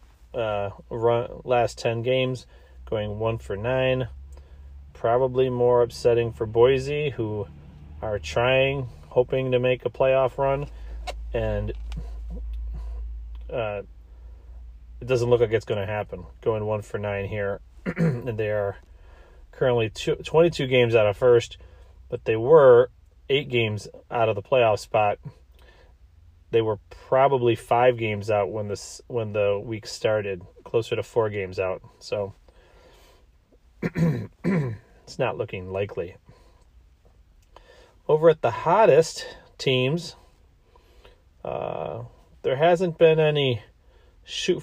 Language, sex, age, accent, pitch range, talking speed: English, male, 30-49, American, 85-130 Hz, 120 wpm